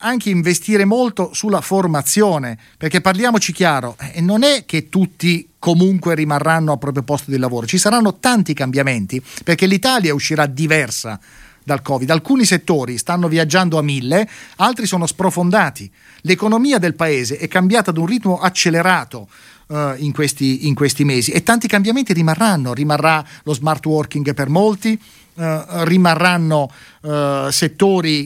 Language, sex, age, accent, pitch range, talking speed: Italian, male, 40-59, native, 140-185 Hz, 135 wpm